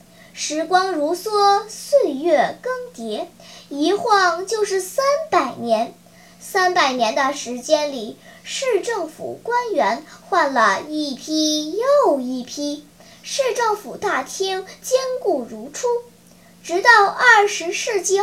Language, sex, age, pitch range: Chinese, male, 10-29, 280-380 Hz